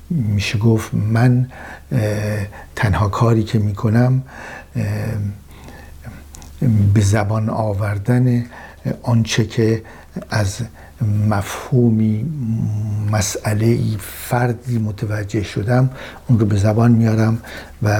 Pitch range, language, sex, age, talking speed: 105-125 Hz, Persian, male, 60-79, 80 wpm